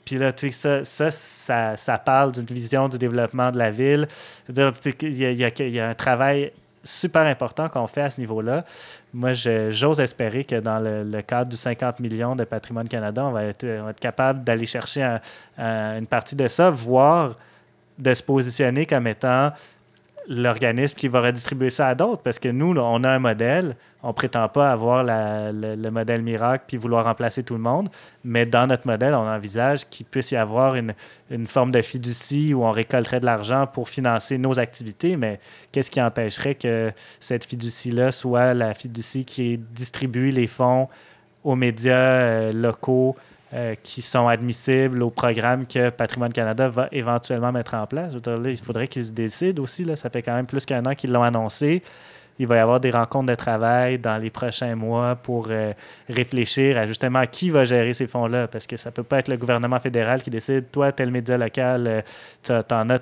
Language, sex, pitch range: French, male, 115-130 Hz